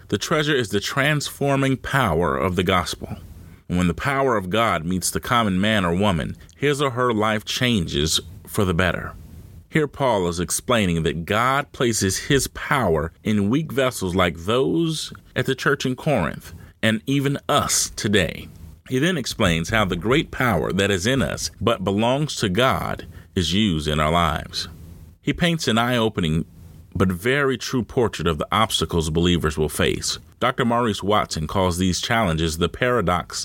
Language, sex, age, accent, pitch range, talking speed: English, male, 30-49, American, 85-125 Hz, 165 wpm